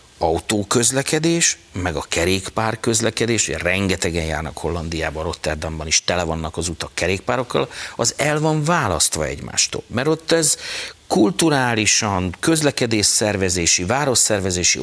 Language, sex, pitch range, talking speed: Hungarian, male, 95-135 Hz, 110 wpm